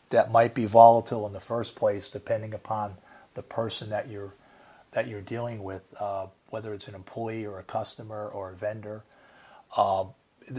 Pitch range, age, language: 105-125 Hz, 40-59, English